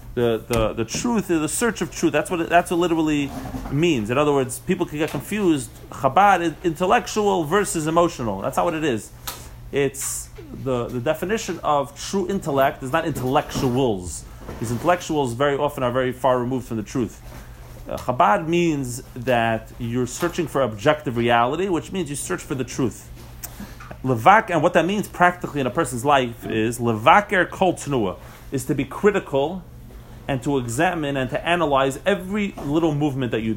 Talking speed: 175 wpm